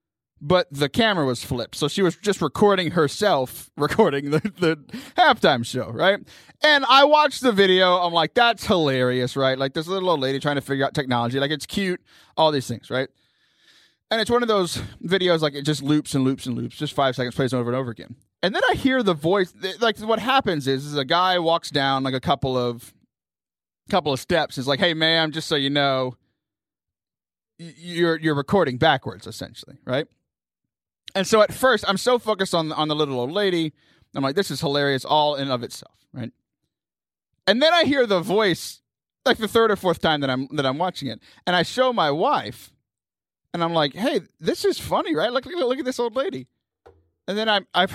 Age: 20-39